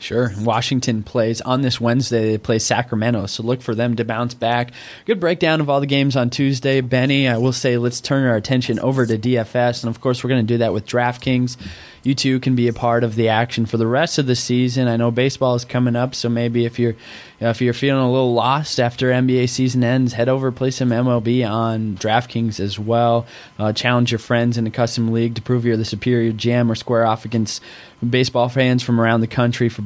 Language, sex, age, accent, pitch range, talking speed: English, male, 20-39, American, 115-130 Hz, 230 wpm